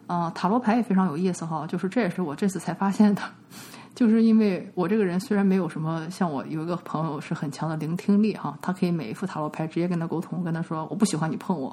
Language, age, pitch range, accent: Chinese, 20-39, 165-205 Hz, native